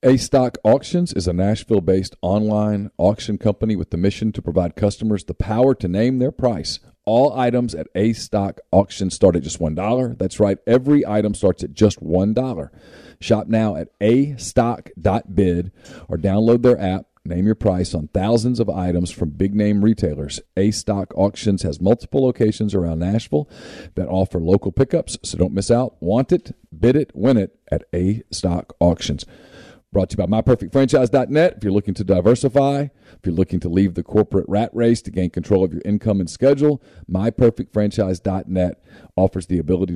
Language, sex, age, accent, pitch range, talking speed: English, male, 40-59, American, 90-115 Hz, 180 wpm